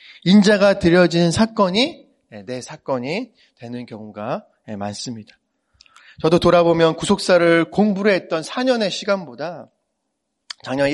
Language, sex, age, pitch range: Korean, male, 30-49, 125-180 Hz